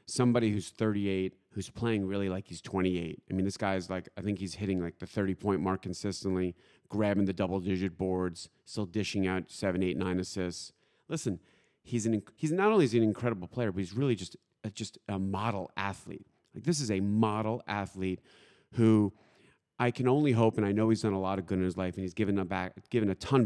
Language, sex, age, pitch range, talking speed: English, male, 30-49, 95-120 Hz, 200 wpm